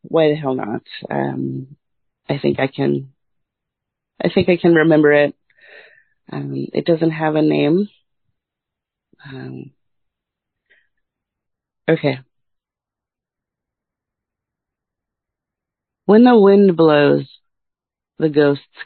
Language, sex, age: English, female, 30-49